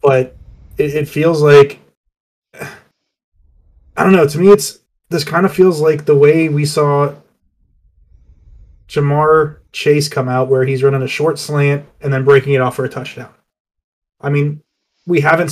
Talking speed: 160 wpm